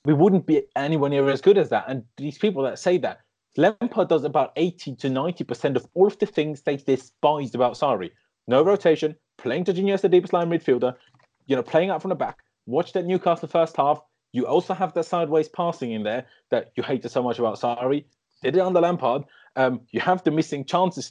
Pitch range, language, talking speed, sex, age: 125-170 Hz, English, 225 wpm, male, 30-49